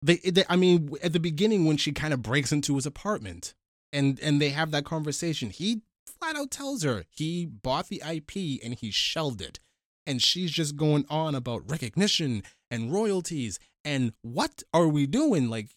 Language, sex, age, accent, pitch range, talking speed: English, male, 20-39, American, 115-150 Hz, 185 wpm